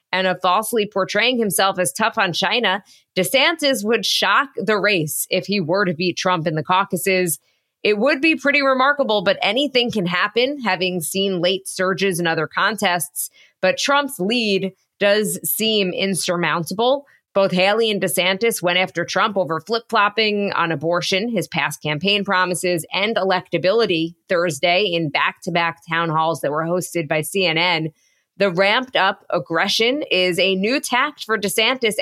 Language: English